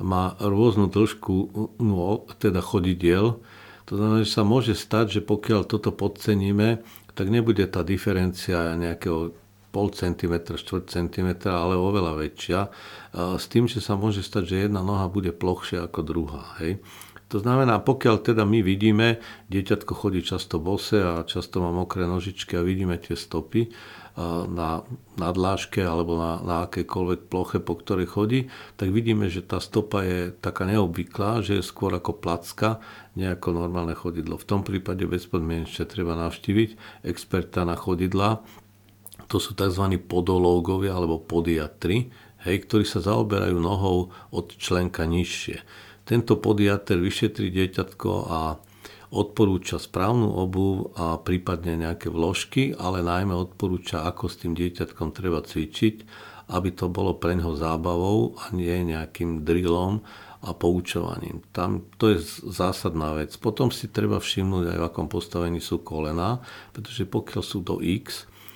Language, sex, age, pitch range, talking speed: Slovak, male, 50-69, 85-105 Hz, 140 wpm